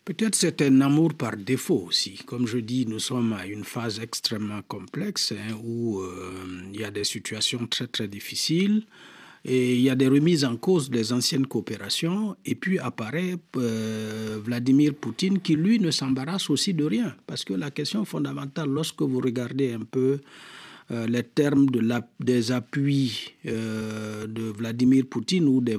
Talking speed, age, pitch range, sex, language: 175 wpm, 50-69, 120-165 Hz, male, French